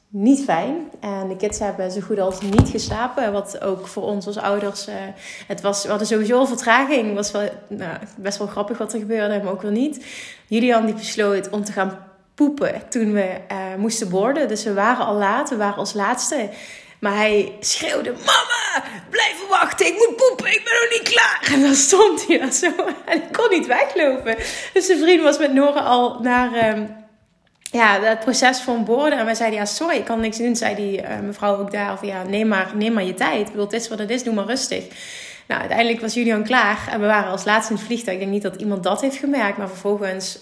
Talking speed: 230 wpm